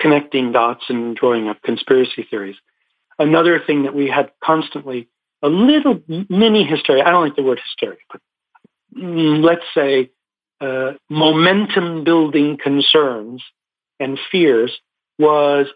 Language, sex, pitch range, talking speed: English, male, 135-170 Hz, 120 wpm